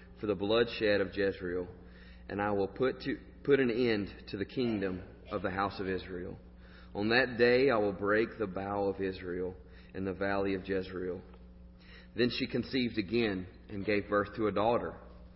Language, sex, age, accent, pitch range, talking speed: English, male, 40-59, American, 90-110 Hz, 180 wpm